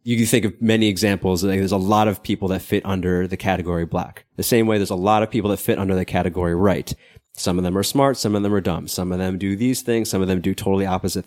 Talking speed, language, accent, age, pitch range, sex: 280 wpm, English, American, 20-39, 95-115 Hz, male